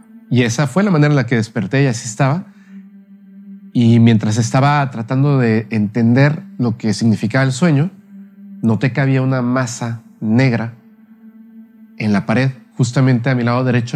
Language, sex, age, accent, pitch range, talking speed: Spanish, male, 40-59, Mexican, 115-195 Hz, 160 wpm